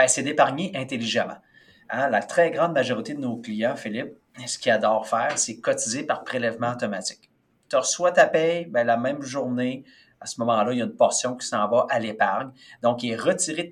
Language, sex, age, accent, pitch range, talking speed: French, male, 40-59, Canadian, 120-180 Hz, 210 wpm